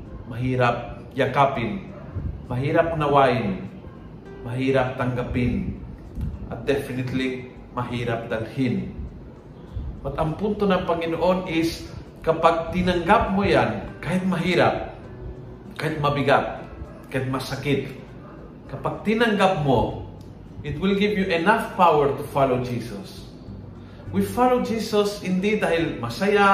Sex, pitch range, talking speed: male, 130-195 Hz, 100 wpm